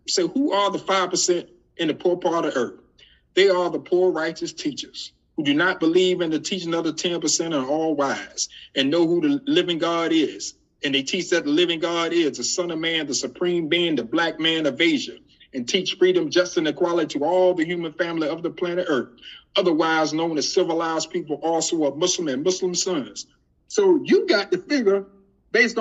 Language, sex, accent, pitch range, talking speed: English, male, American, 170-235 Hz, 210 wpm